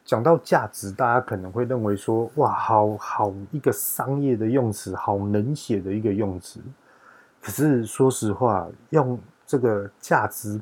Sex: male